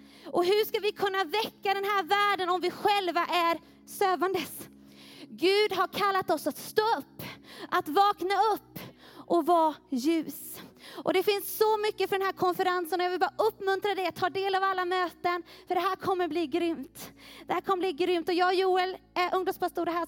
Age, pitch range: 20-39, 325-390 Hz